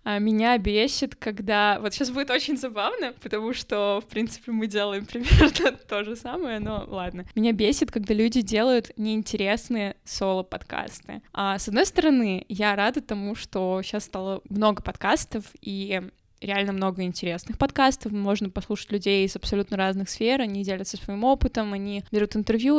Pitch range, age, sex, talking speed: 200-240 Hz, 20-39, female, 155 wpm